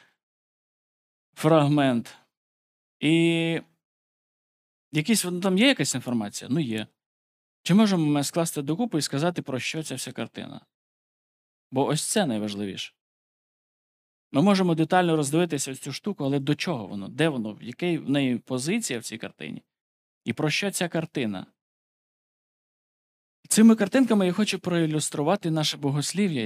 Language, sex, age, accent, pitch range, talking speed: Ukrainian, male, 20-39, native, 120-165 Hz, 125 wpm